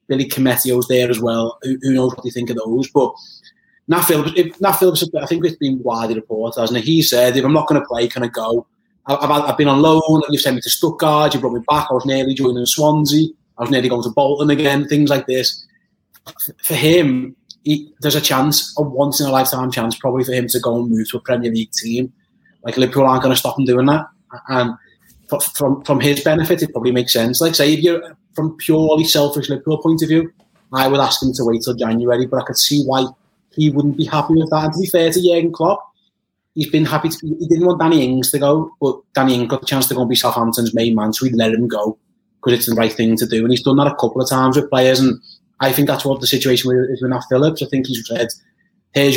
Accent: British